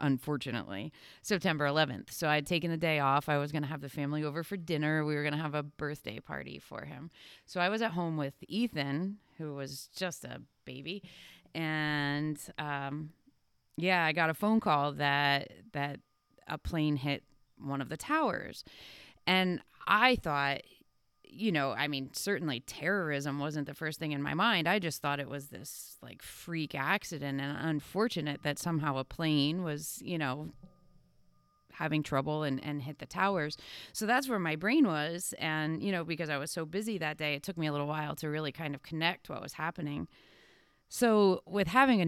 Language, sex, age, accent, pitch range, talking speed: English, female, 30-49, American, 145-170 Hz, 190 wpm